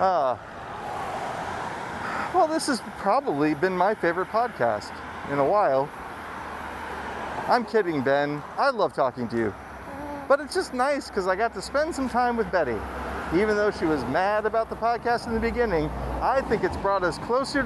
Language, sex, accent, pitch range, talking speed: English, male, American, 145-240 Hz, 170 wpm